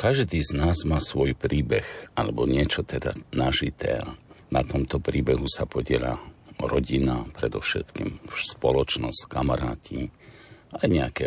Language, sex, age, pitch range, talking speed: Slovak, male, 50-69, 70-95 Hz, 110 wpm